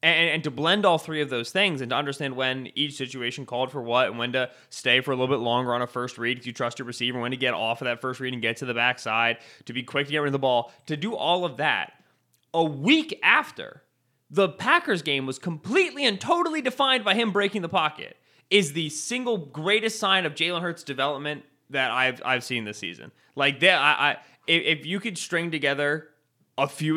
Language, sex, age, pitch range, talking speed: English, male, 20-39, 130-165 Hz, 240 wpm